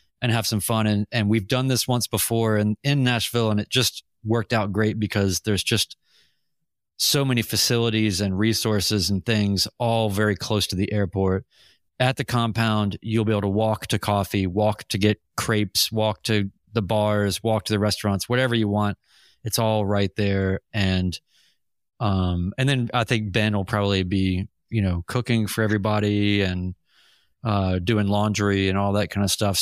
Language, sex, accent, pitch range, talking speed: English, male, American, 100-115 Hz, 185 wpm